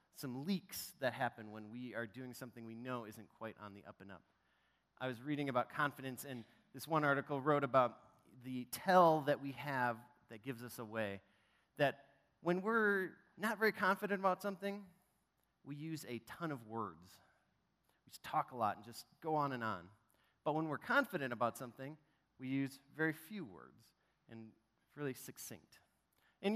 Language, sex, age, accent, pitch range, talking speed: English, male, 30-49, American, 125-185 Hz, 175 wpm